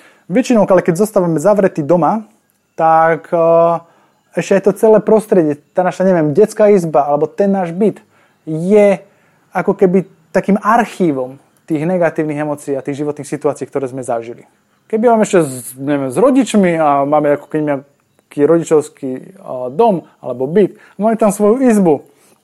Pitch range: 145-190 Hz